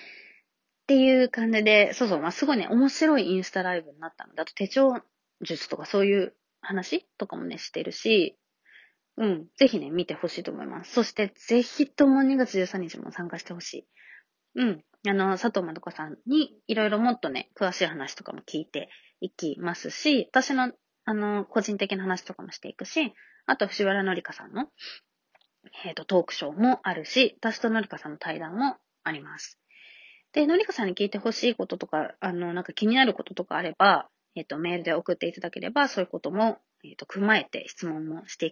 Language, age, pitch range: Japanese, 20-39, 175-250 Hz